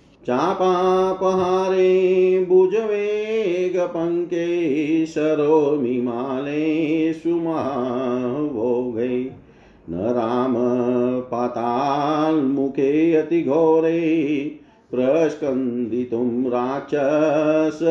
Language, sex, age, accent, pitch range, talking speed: Hindi, male, 50-69, native, 135-180 Hz, 40 wpm